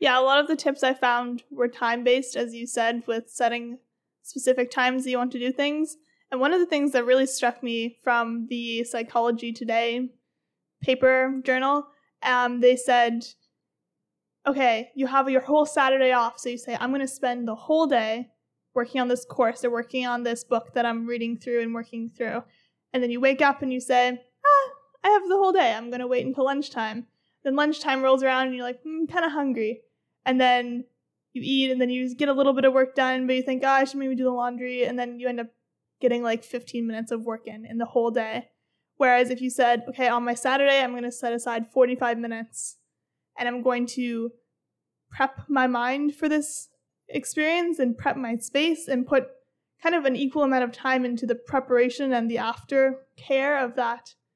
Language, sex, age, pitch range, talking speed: English, female, 30-49, 240-270 Hz, 210 wpm